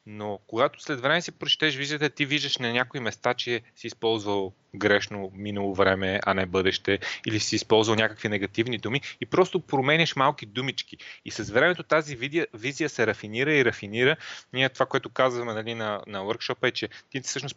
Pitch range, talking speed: 110-145 Hz, 185 wpm